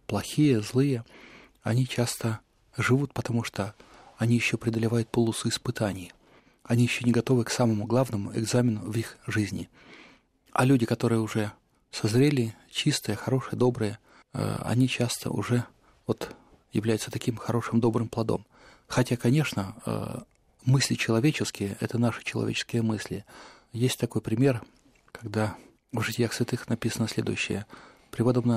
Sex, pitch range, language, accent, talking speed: male, 110-125 Hz, Russian, native, 125 wpm